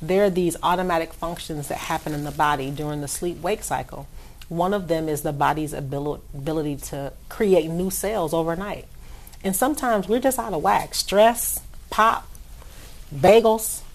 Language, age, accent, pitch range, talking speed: English, 40-59, American, 155-195 Hz, 155 wpm